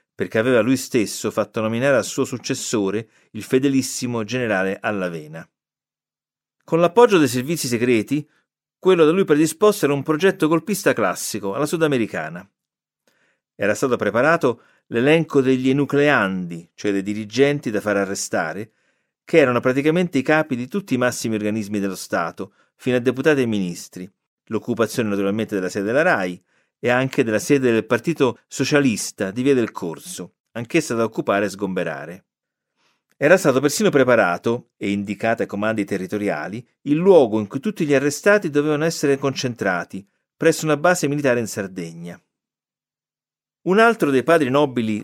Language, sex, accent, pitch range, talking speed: Italian, male, native, 105-150 Hz, 145 wpm